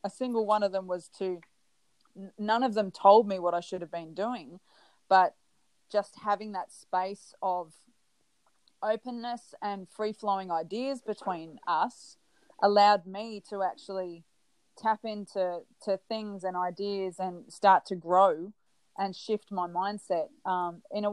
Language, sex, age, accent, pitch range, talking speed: English, female, 20-39, Australian, 185-215 Hz, 145 wpm